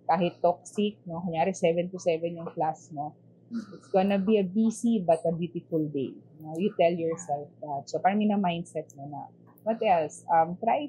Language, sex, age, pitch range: English, female, 20-39, 165-195 Hz